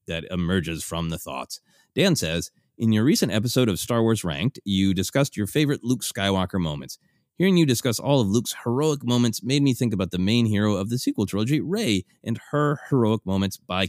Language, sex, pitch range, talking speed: English, male, 95-125 Hz, 205 wpm